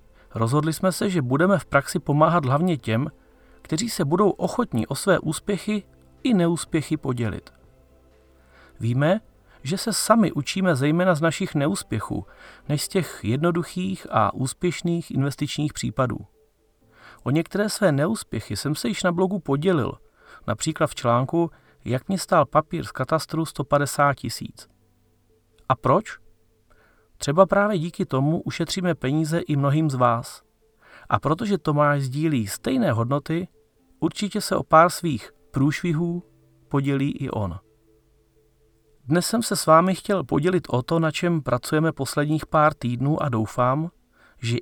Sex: male